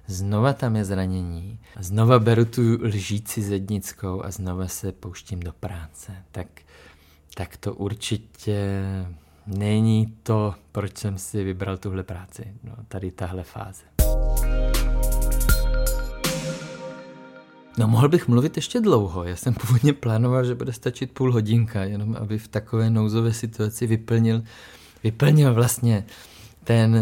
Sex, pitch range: male, 95-115 Hz